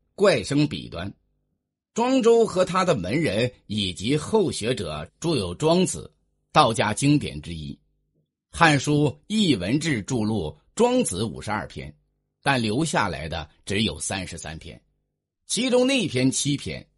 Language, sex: Chinese, male